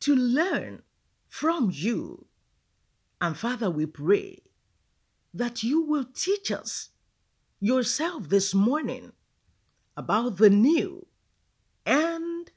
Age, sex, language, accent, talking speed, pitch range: 50-69, female, English, Nigerian, 95 wpm, 195-295 Hz